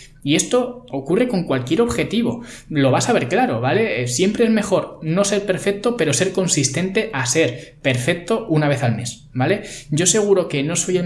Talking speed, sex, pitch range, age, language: 190 wpm, male, 130-190 Hz, 20-39, Spanish